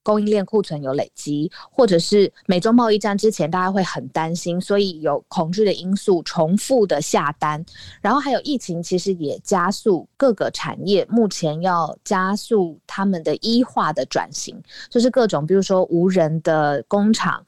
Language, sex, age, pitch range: Chinese, female, 20-39, 155-210 Hz